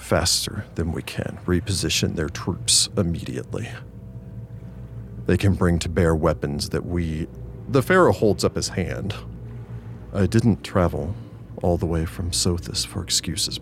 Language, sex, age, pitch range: English, male, 40-59, 80-105 Hz